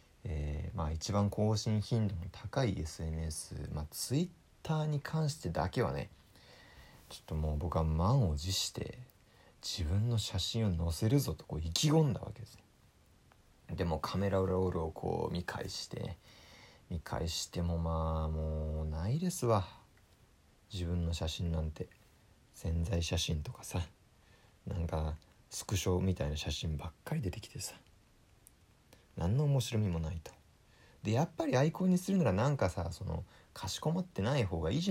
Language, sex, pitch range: Japanese, male, 80-110 Hz